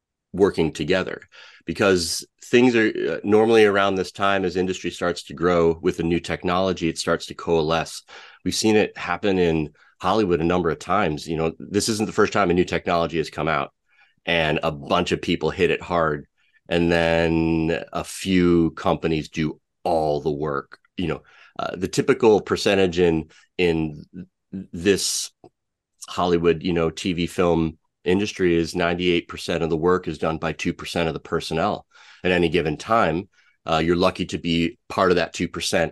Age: 30-49